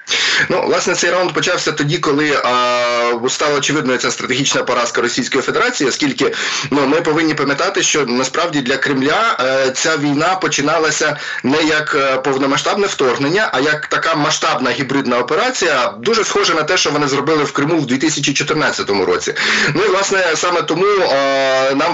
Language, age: Ukrainian, 20-39